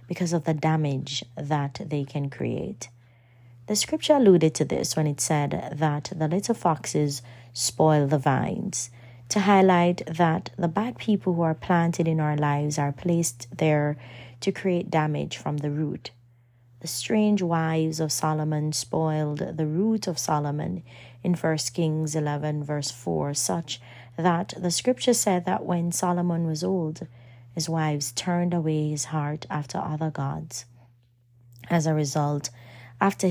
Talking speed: 150 wpm